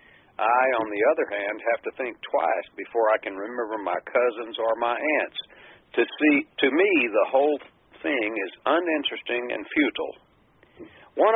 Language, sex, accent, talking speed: English, male, American, 160 wpm